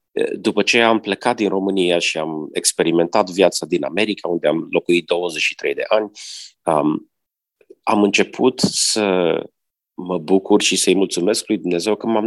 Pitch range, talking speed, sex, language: 105-135 Hz, 150 wpm, male, Romanian